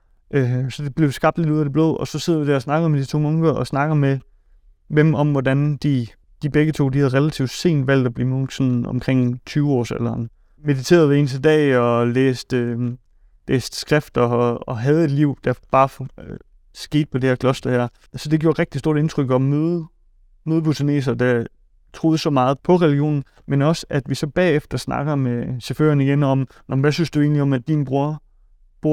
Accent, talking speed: native, 205 wpm